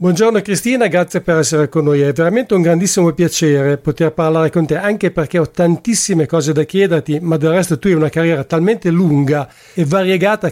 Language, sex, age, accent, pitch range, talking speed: English, male, 50-69, Italian, 155-185 Hz, 195 wpm